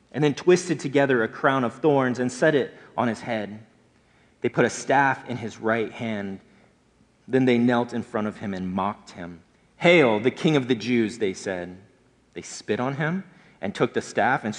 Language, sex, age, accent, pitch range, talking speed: English, male, 30-49, American, 105-130 Hz, 200 wpm